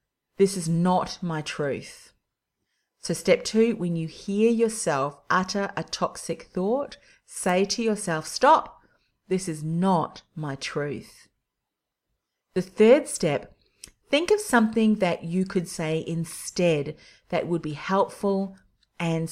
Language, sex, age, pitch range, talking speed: English, female, 30-49, 160-200 Hz, 125 wpm